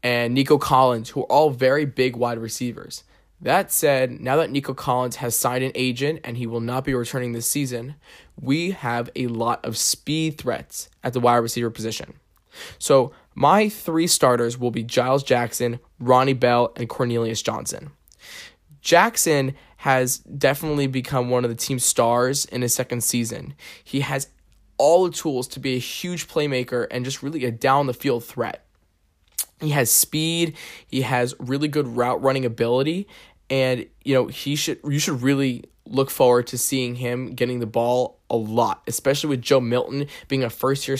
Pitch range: 120-140 Hz